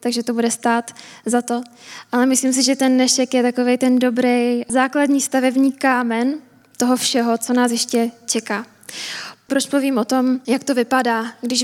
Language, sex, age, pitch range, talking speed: Czech, female, 10-29, 235-260 Hz, 170 wpm